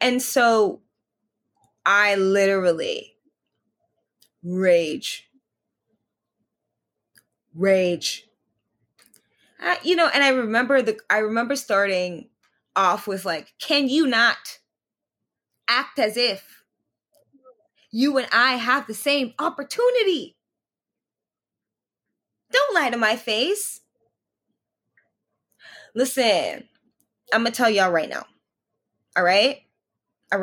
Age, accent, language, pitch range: 20-39, American, English, 215-305 Hz